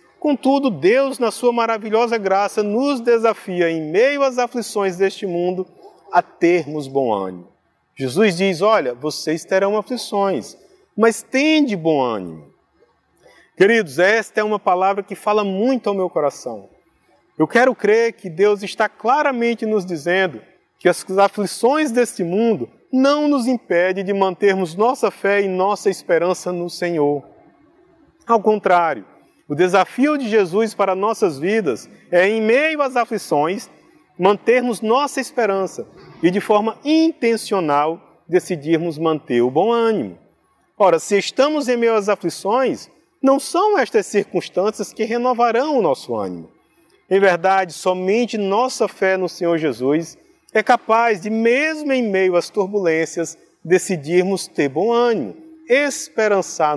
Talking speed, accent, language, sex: 135 wpm, Brazilian, Portuguese, male